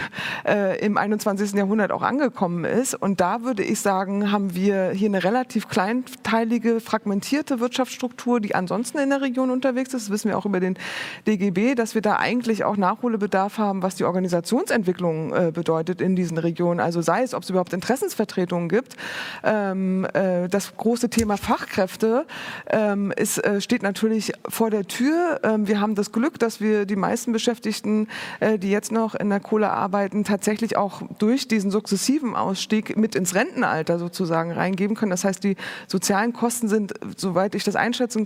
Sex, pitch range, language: female, 195-235 Hz, German